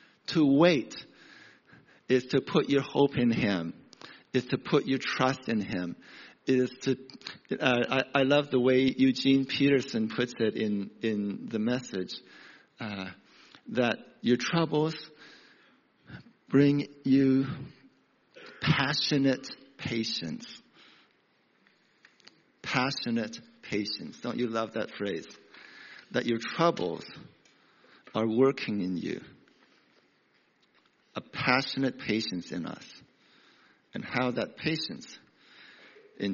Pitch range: 110-140 Hz